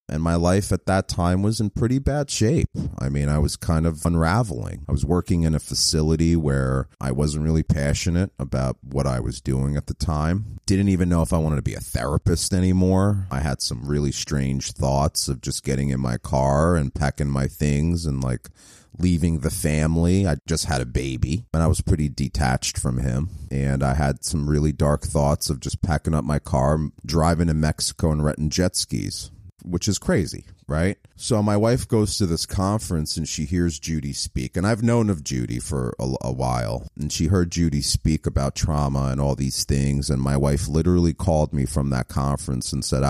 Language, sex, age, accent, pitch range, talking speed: English, male, 30-49, American, 70-85 Hz, 205 wpm